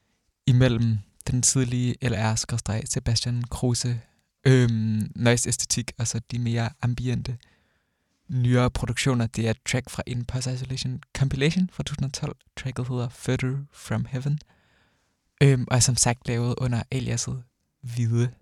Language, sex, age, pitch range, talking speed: Danish, male, 20-39, 120-140 Hz, 135 wpm